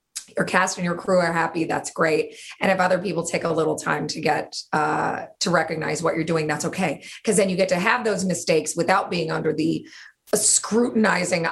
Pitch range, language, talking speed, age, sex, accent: 165-215 Hz, English, 210 wpm, 30-49, female, American